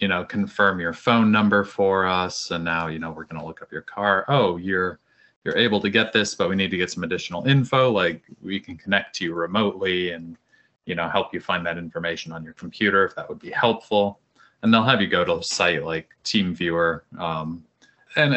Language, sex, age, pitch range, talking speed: English, male, 30-49, 85-100 Hz, 225 wpm